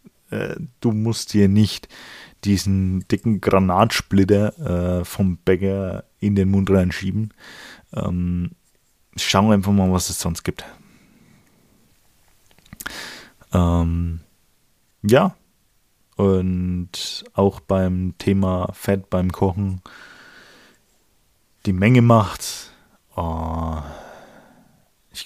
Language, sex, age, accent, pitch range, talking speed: German, male, 20-39, German, 90-110 Hz, 85 wpm